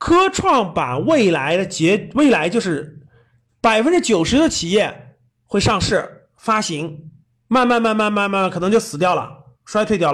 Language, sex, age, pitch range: Chinese, male, 30-49, 140-225 Hz